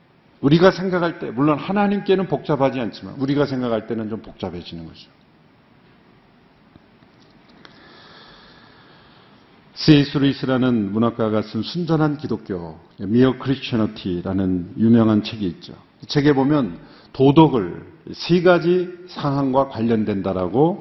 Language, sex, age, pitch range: Korean, male, 50-69, 115-170 Hz